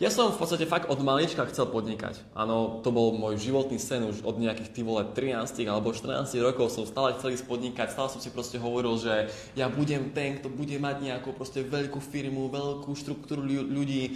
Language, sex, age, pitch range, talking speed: Slovak, male, 20-39, 115-140 Hz, 205 wpm